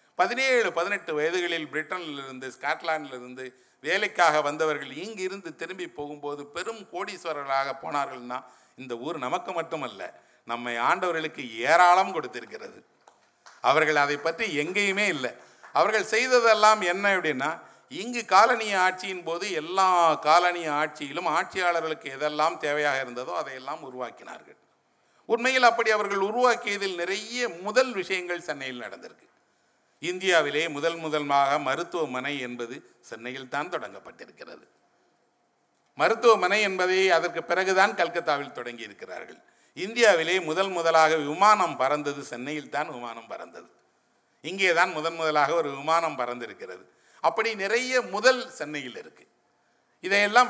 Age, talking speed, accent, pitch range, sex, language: 50-69, 105 wpm, native, 145-195 Hz, male, Tamil